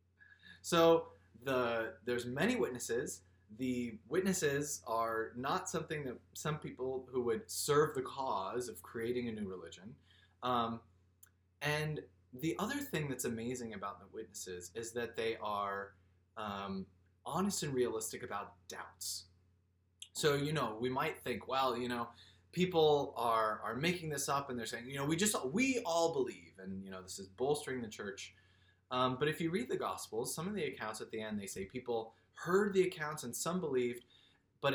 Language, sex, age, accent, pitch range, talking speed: English, male, 20-39, American, 95-155 Hz, 175 wpm